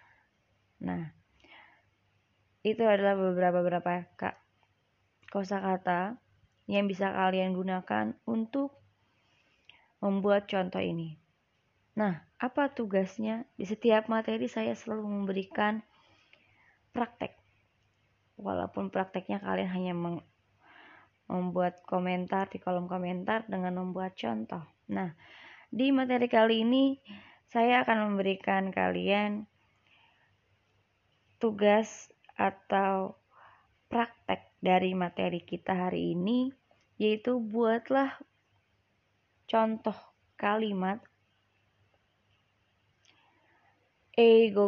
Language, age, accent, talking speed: Indonesian, 20-39, native, 80 wpm